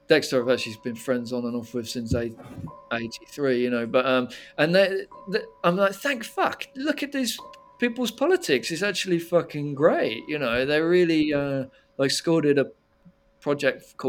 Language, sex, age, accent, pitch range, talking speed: English, male, 40-59, British, 125-160 Hz, 160 wpm